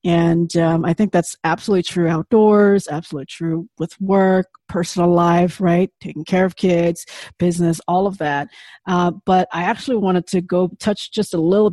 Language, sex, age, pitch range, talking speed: English, female, 40-59, 175-205 Hz, 175 wpm